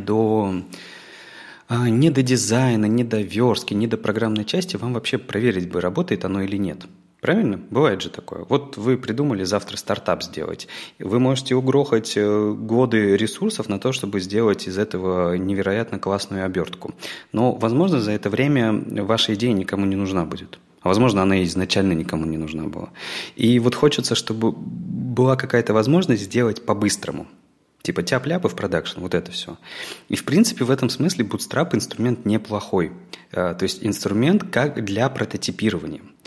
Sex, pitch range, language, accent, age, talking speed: male, 100-130 Hz, Russian, native, 30-49, 155 wpm